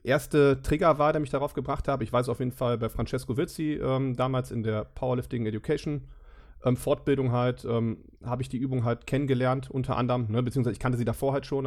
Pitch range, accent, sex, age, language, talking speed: 120-145 Hz, German, male, 40-59, German, 215 wpm